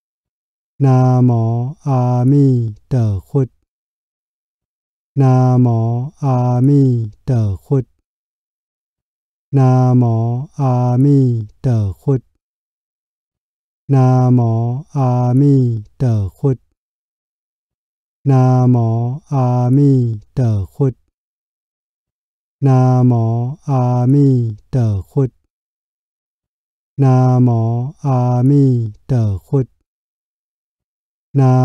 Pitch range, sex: 115-135 Hz, male